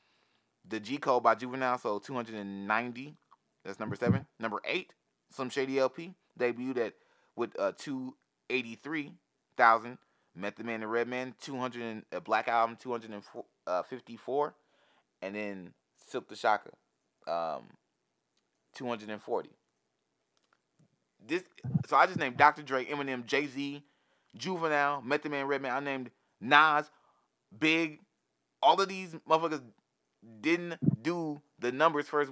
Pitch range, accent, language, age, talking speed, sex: 115-150 Hz, American, English, 20-39, 120 wpm, male